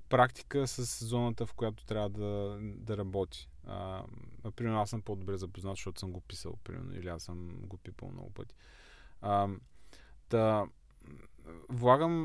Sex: male